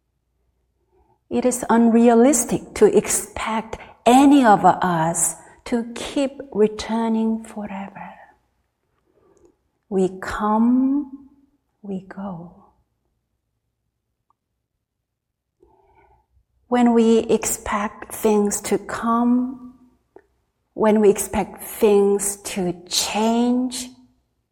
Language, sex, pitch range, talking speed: English, female, 185-235 Hz, 70 wpm